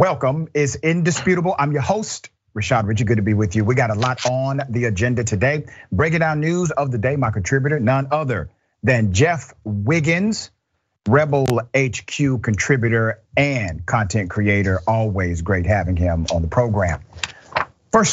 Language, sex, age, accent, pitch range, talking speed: English, male, 40-59, American, 110-150 Hz, 160 wpm